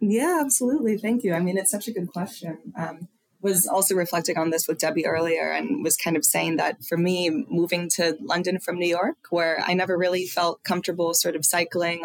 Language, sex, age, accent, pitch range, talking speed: English, female, 20-39, American, 165-185 Hz, 215 wpm